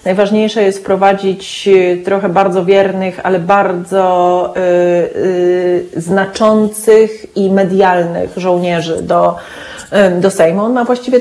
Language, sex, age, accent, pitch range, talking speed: Polish, female, 30-49, native, 175-205 Hz, 110 wpm